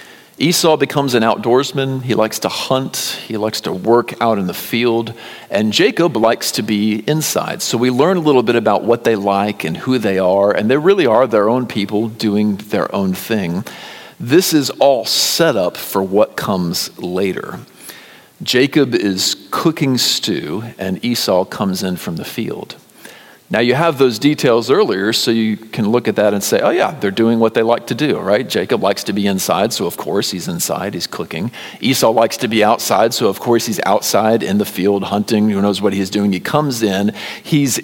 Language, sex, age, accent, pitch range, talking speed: English, male, 50-69, American, 100-130 Hz, 200 wpm